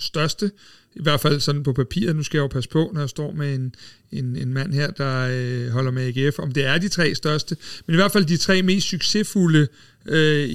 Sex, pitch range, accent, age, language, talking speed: male, 145-170 Hz, native, 60-79, Danish, 240 wpm